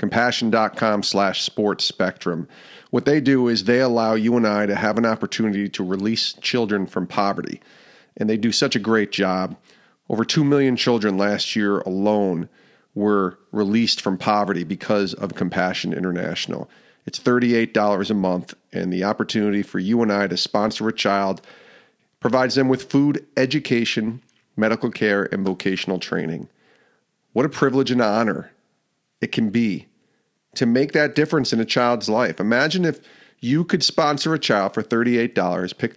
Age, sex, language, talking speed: 40-59, male, English, 160 wpm